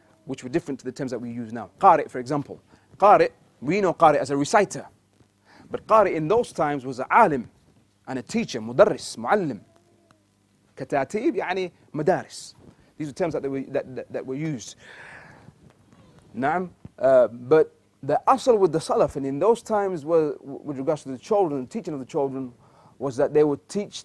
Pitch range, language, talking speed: 125-170 Hz, English, 185 wpm